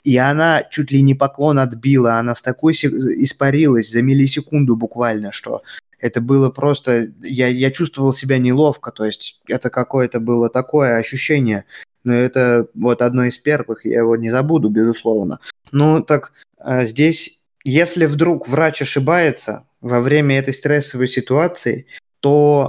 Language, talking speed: Russian, 145 wpm